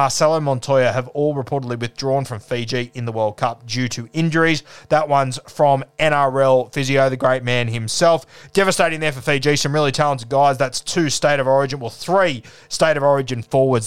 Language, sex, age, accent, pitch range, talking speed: English, male, 20-39, Australian, 125-150 Hz, 185 wpm